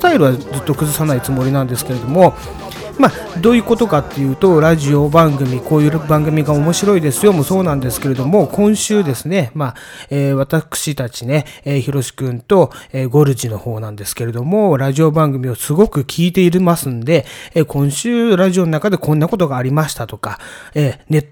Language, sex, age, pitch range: Japanese, male, 30-49, 135-175 Hz